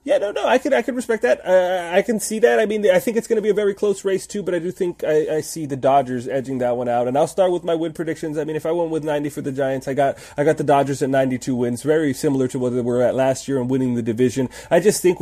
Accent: American